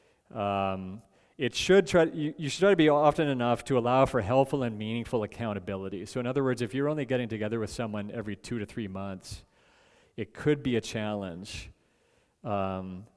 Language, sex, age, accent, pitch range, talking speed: English, male, 40-59, American, 100-125 Hz, 185 wpm